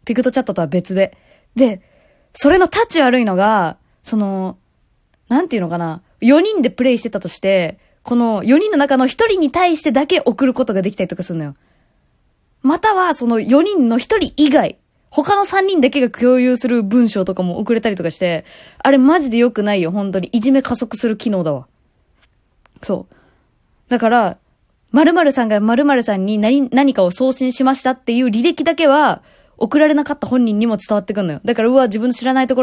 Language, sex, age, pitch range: Japanese, female, 20-39, 190-275 Hz